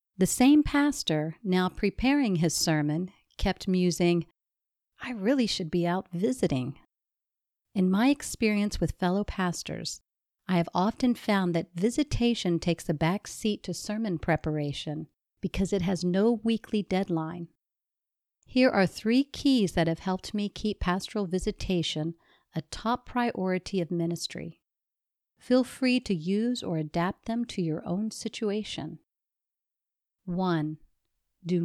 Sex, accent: female, American